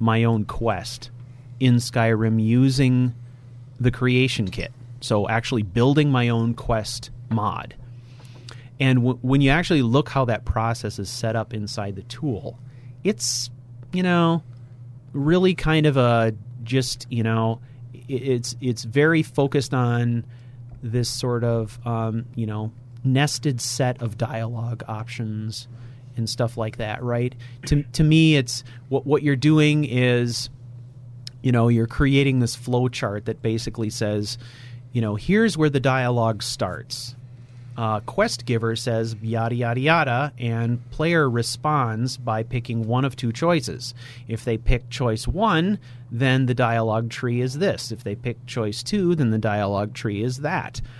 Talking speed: 145 wpm